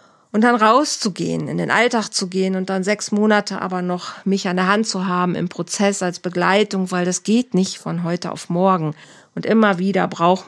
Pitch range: 165-190 Hz